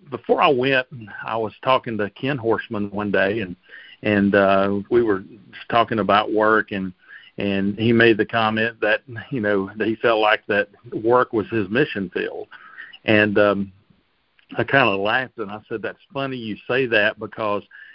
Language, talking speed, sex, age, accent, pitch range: English, 175 wpm, male, 50-69, American, 100-115 Hz